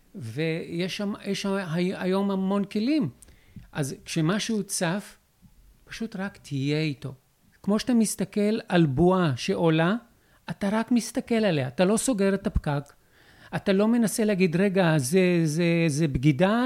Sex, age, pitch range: male, 50-69, 160-205 Hz